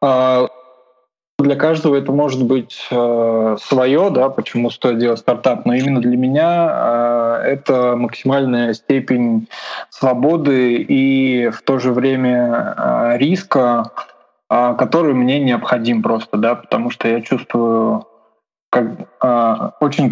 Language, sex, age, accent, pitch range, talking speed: Russian, male, 20-39, native, 120-135 Hz, 105 wpm